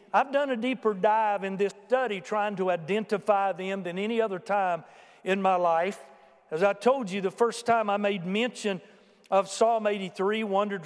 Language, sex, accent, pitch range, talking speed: English, male, American, 185-225 Hz, 180 wpm